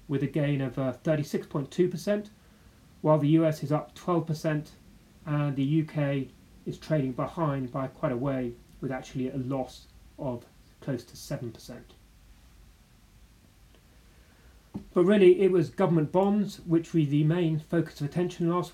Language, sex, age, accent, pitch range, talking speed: English, male, 30-49, British, 135-165 Hz, 140 wpm